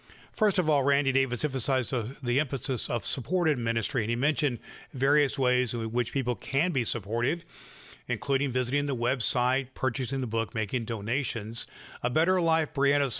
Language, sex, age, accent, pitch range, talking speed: English, male, 50-69, American, 120-145 Hz, 160 wpm